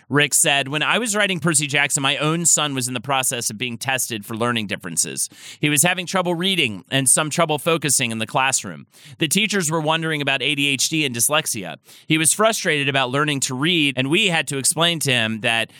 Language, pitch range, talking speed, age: English, 130-160 Hz, 215 wpm, 30-49